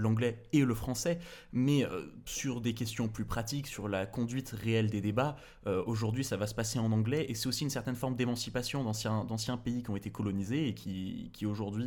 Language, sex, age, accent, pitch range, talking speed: French, male, 20-39, French, 110-135 Hz, 215 wpm